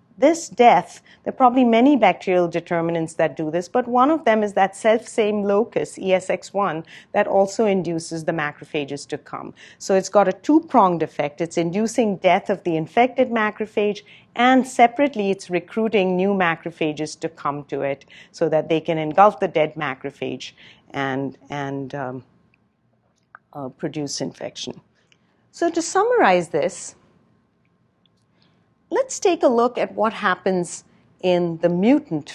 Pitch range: 165-225 Hz